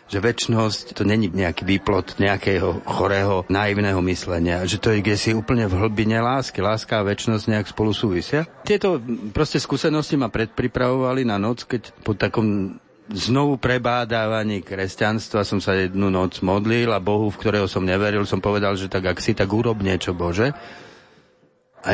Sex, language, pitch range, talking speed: male, Slovak, 100-120 Hz, 165 wpm